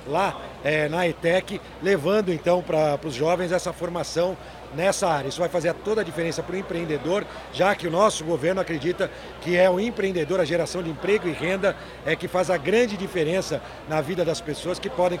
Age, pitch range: 50-69, 170-200 Hz